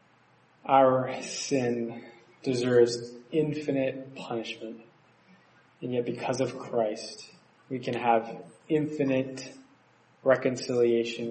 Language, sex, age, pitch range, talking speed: English, male, 20-39, 115-130 Hz, 80 wpm